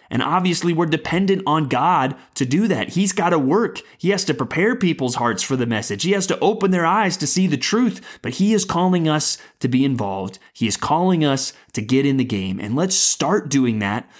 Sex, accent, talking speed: male, American, 230 wpm